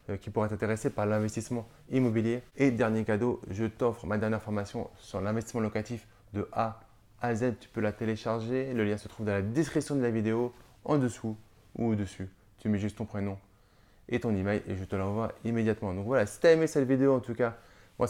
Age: 20-39